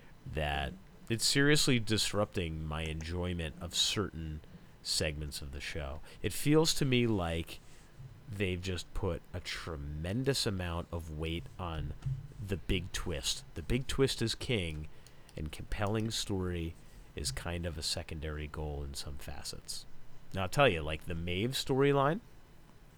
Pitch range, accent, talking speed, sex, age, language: 80-120 Hz, American, 140 wpm, male, 30-49, English